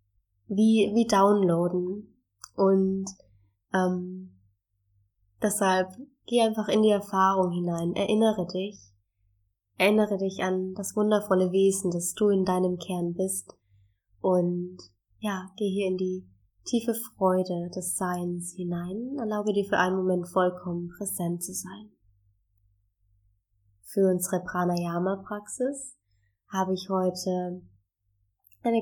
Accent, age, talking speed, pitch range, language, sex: German, 20-39, 110 wpm, 175-200 Hz, German, female